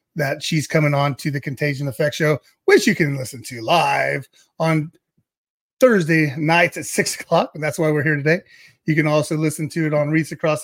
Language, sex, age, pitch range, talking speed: English, male, 30-49, 140-170 Hz, 205 wpm